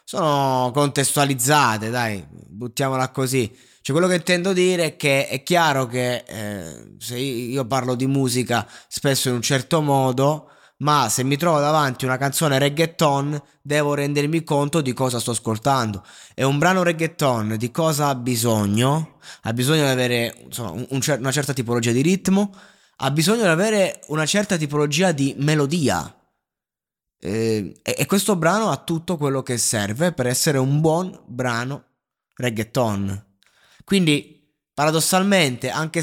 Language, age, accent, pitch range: Italian, 20-39, native, 125-160 Hz